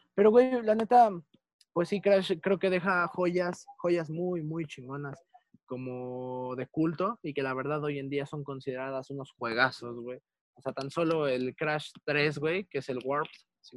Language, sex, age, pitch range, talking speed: Spanish, male, 20-39, 140-175 Hz, 185 wpm